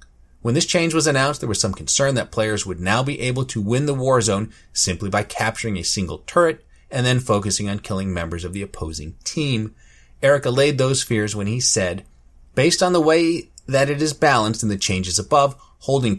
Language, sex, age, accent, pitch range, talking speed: English, male, 30-49, American, 95-130 Hz, 210 wpm